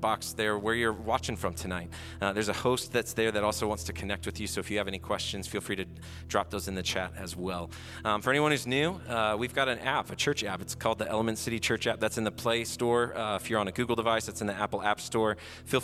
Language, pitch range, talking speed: English, 95-115 Hz, 280 wpm